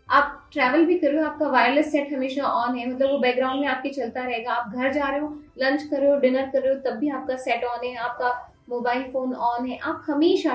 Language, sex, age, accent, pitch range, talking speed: Hindi, female, 20-39, native, 245-300 Hz, 255 wpm